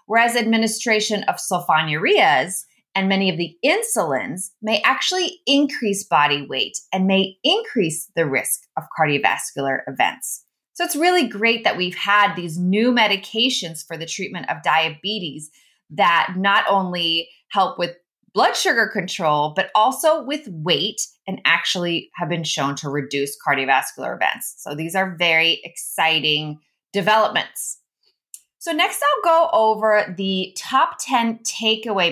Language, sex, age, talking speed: English, female, 20-39, 135 wpm